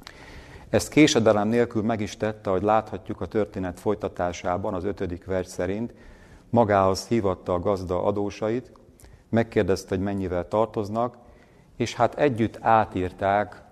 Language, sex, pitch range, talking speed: Hungarian, male, 90-110 Hz, 125 wpm